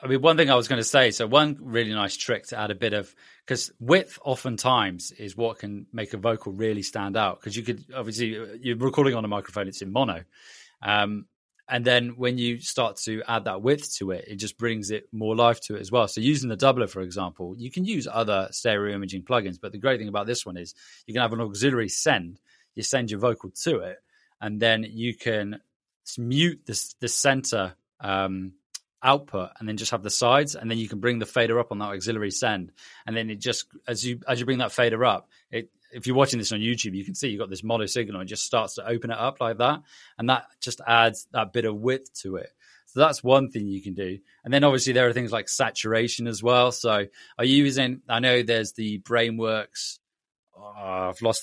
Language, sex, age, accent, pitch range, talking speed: English, male, 20-39, British, 105-125 Hz, 235 wpm